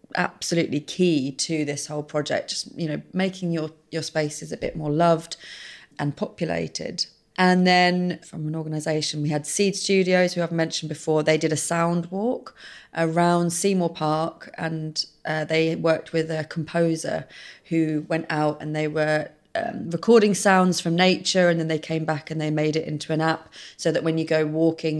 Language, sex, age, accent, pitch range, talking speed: English, female, 30-49, British, 155-170 Hz, 180 wpm